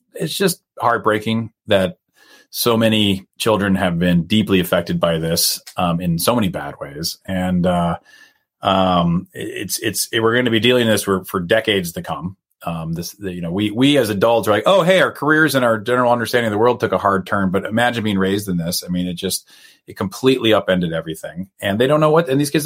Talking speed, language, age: 220 wpm, English, 30-49